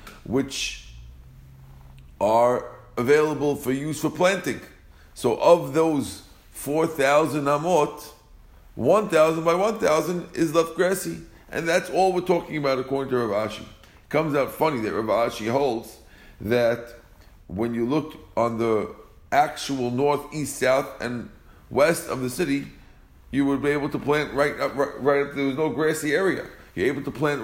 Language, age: English, 50-69